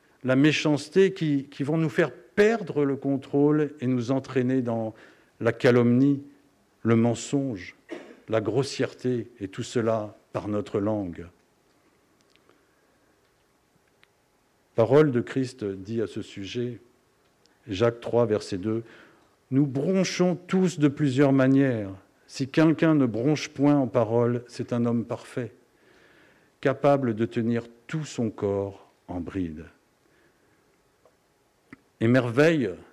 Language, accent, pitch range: French, French, 115-140 Hz